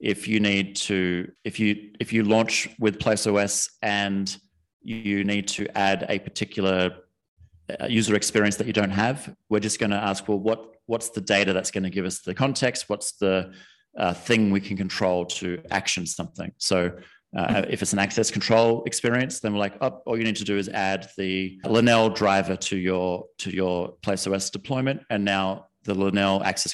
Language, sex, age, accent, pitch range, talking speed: English, male, 30-49, Australian, 95-110 Hz, 195 wpm